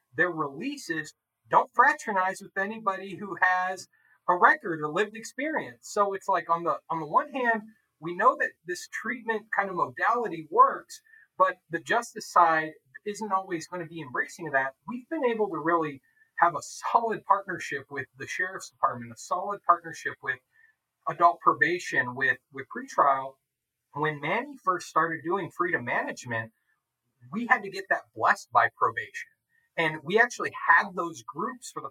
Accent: American